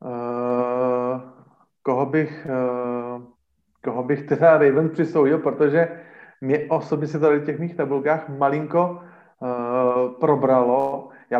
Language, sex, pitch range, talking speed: Slovak, male, 125-165 Hz, 115 wpm